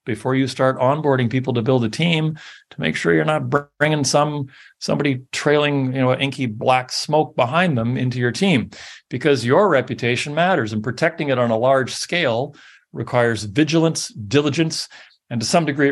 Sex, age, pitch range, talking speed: male, 40-59, 115-145 Hz, 175 wpm